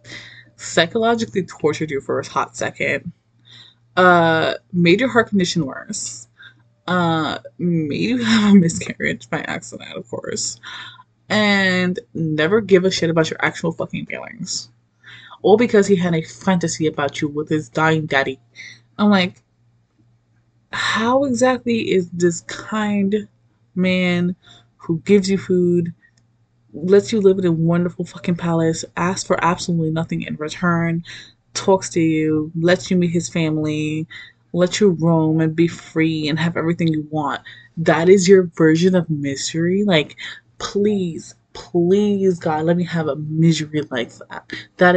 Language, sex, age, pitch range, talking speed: English, female, 20-39, 140-185 Hz, 145 wpm